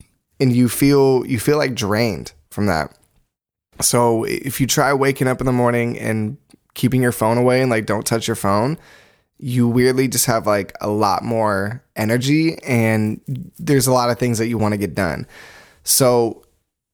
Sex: male